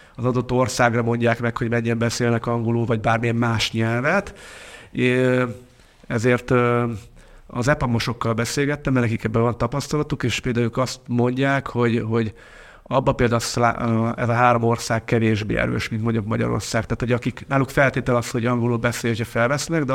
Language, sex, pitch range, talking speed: Hungarian, male, 115-125 Hz, 155 wpm